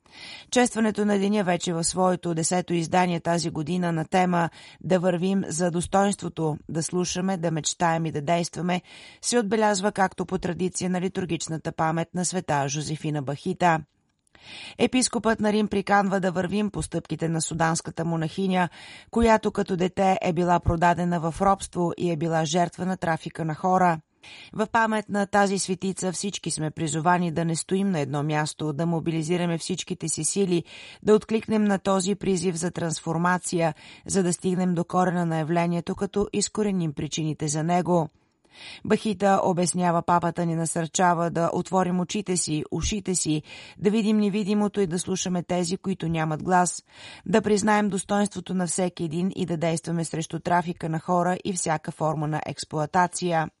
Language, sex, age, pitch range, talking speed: Bulgarian, female, 30-49, 165-190 Hz, 155 wpm